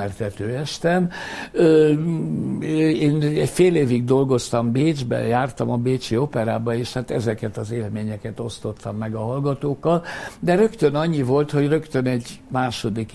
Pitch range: 120-145 Hz